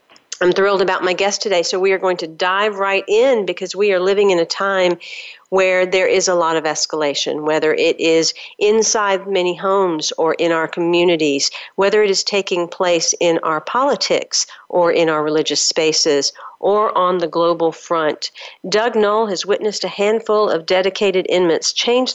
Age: 50-69